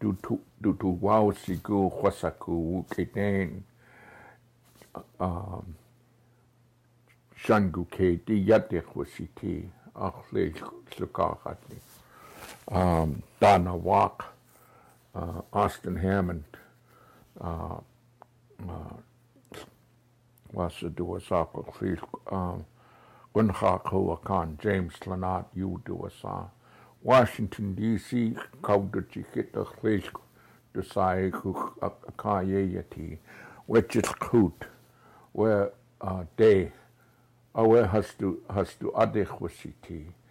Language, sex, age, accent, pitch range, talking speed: English, male, 60-79, American, 90-110 Hz, 60 wpm